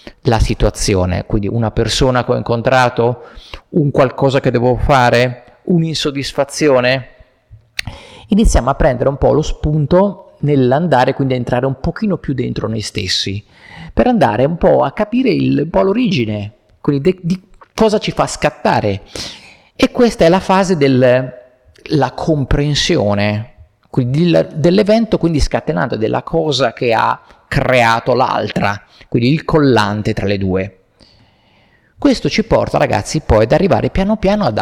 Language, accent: Italian, native